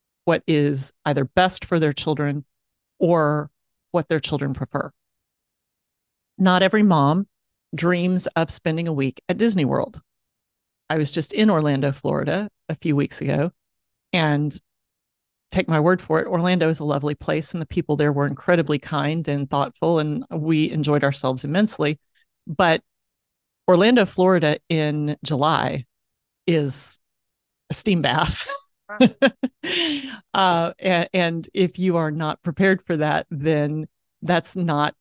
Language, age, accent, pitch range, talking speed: English, 40-59, American, 145-175 Hz, 135 wpm